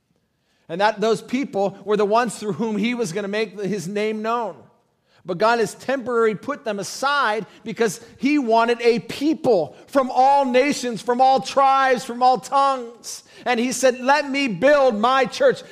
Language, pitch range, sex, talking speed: English, 200-265 Hz, male, 175 wpm